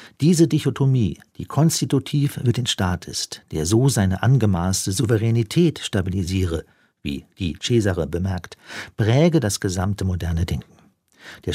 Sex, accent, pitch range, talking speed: male, German, 95-120 Hz, 125 wpm